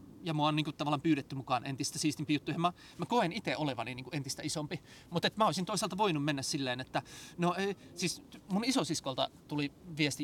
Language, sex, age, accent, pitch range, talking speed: Finnish, male, 30-49, native, 135-165 Hz, 200 wpm